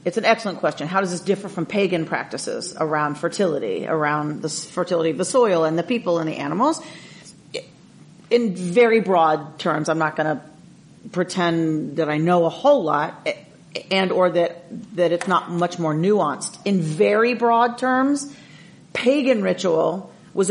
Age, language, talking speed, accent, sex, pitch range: 40-59, English, 165 wpm, American, female, 170-215 Hz